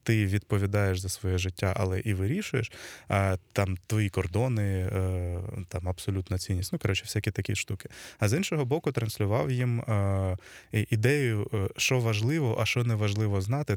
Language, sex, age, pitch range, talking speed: Ukrainian, male, 20-39, 100-125 Hz, 140 wpm